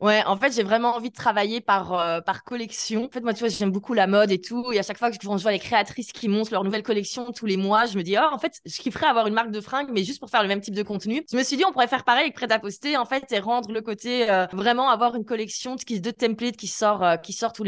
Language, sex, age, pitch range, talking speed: French, female, 20-39, 195-235 Hz, 315 wpm